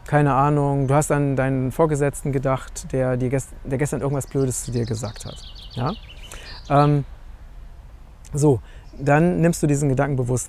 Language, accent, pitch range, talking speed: German, German, 125-150 Hz, 160 wpm